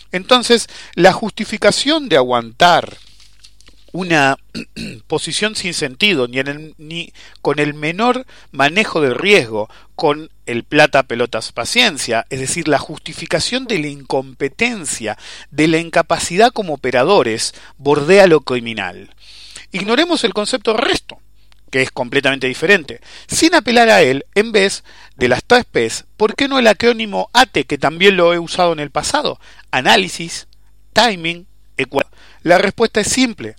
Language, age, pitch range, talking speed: English, 40-59, 130-205 Hz, 135 wpm